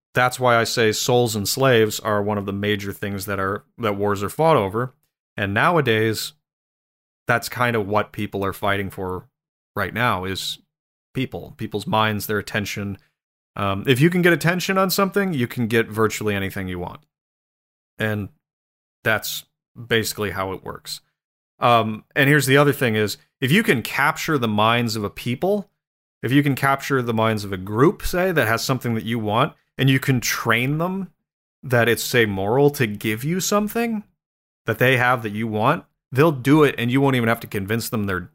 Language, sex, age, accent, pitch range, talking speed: English, male, 30-49, American, 105-140 Hz, 190 wpm